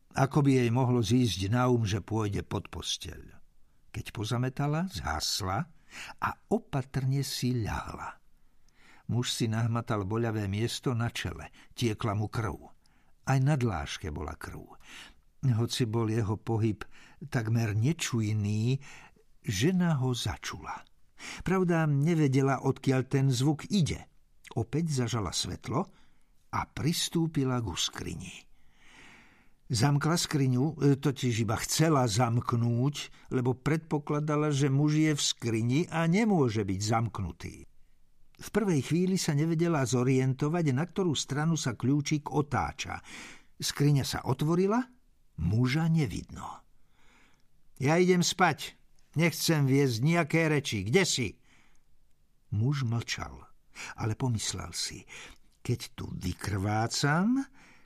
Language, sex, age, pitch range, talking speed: Slovak, male, 60-79, 115-150 Hz, 110 wpm